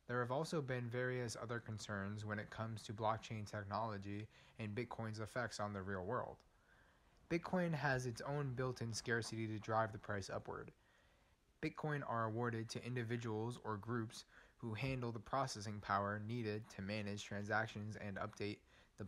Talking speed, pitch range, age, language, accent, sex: 155 wpm, 105-125 Hz, 20-39, English, American, male